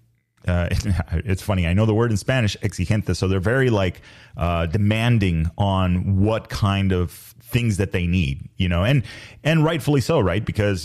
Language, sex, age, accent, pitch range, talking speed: English, male, 30-49, American, 90-110 Hz, 175 wpm